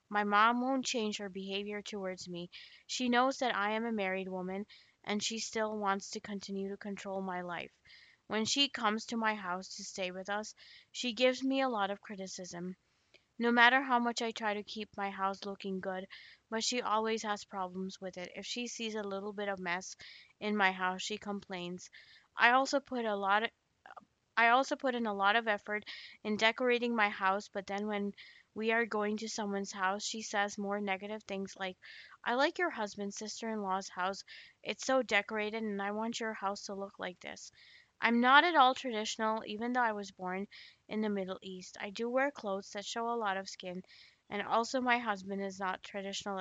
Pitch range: 195-225 Hz